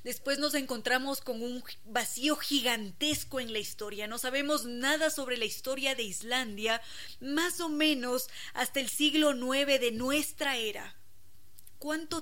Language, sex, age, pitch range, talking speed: Spanish, female, 20-39, 220-270 Hz, 140 wpm